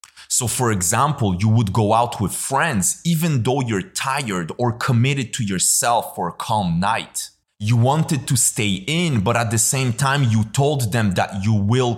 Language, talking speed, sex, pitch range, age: English, 185 wpm, male, 100-130 Hz, 30-49